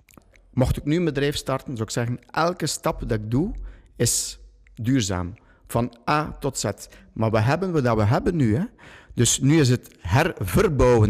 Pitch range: 105-130 Hz